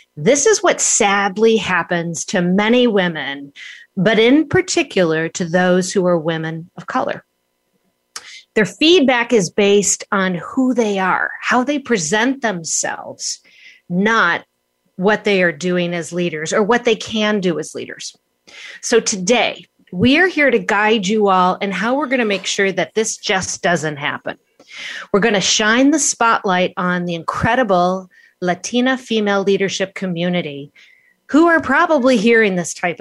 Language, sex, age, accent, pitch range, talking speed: English, female, 40-59, American, 180-235 Hz, 155 wpm